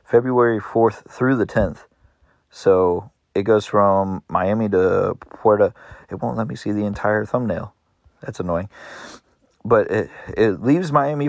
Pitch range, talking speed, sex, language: 95-110 Hz, 145 wpm, male, English